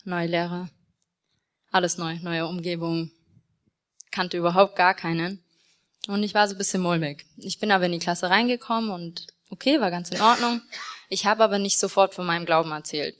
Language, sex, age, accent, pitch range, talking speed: German, female, 20-39, German, 165-205 Hz, 175 wpm